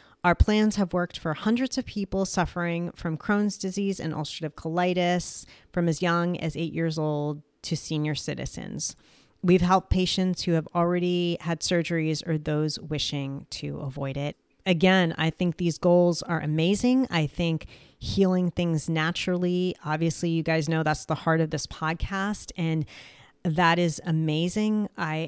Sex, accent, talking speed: female, American, 155 wpm